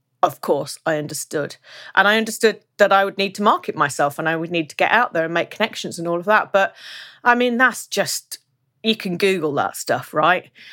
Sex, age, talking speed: female, 30-49, 225 wpm